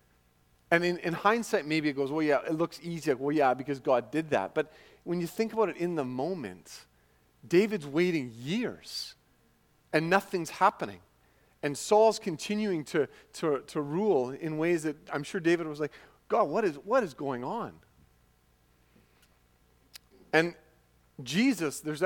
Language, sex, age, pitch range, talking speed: English, male, 40-59, 120-165 Hz, 160 wpm